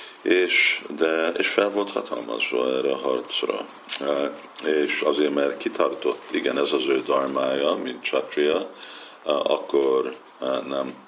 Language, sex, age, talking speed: Hungarian, male, 50-69, 115 wpm